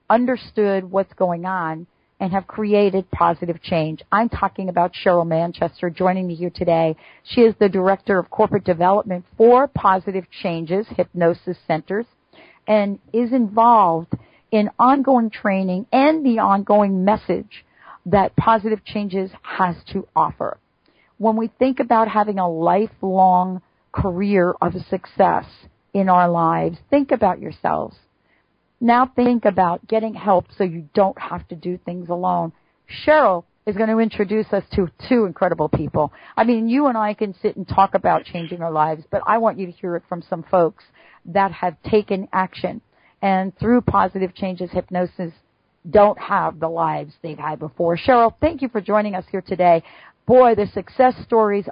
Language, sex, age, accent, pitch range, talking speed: English, female, 40-59, American, 175-215 Hz, 160 wpm